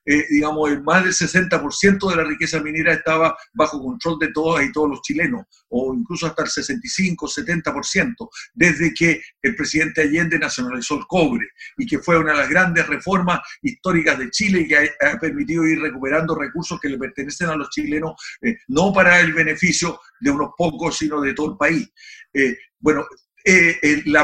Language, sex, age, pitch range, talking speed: Spanish, male, 60-79, 150-185 Hz, 185 wpm